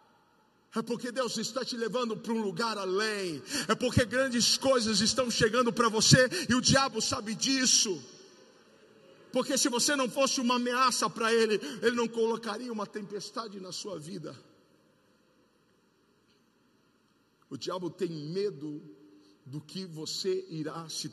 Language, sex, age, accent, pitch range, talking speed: Portuguese, male, 50-69, Brazilian, 125-210 Hz, 140 wpm